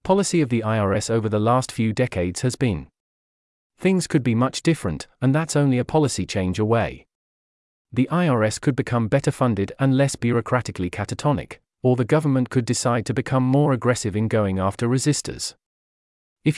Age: 30-49